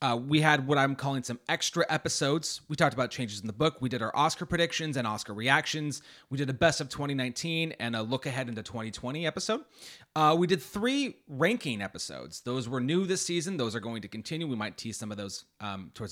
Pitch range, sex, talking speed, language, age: 130-190 Hz, male, 225 wpm, English, 30-49